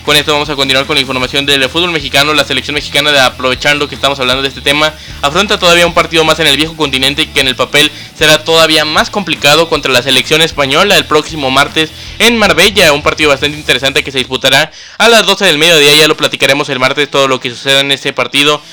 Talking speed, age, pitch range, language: 230 wpm, 20-39, 135-155 Hz, Spanish